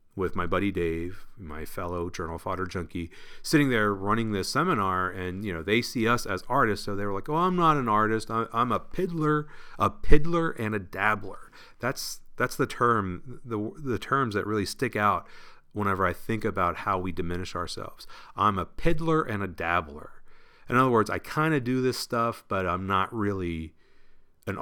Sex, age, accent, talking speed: male, 40-59, American, 195 wpm